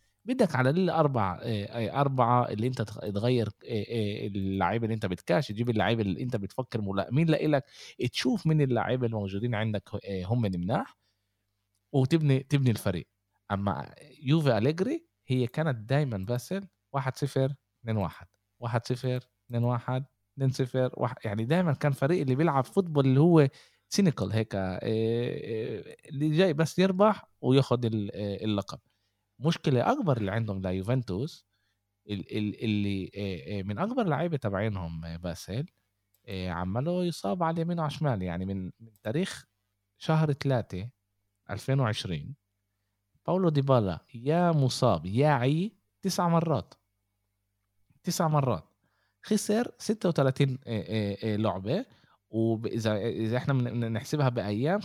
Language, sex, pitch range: Arabic, male, 100-145 Hz